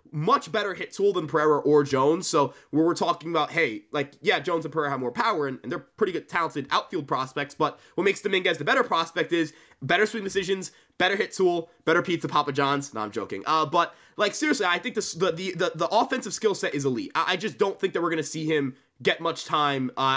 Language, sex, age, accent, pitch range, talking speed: English, male, 20-39, American, 145-195 Hz, 240 wpm